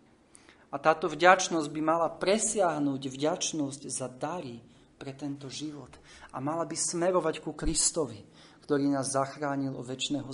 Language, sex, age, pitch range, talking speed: Slovak, male, 40-59, 125-150 Hz, 135 wpm